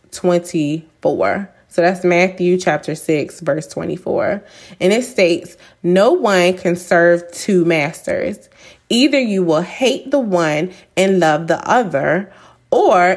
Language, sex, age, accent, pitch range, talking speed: English, female, 20-39, American, 175-210 Hz, 130 wpm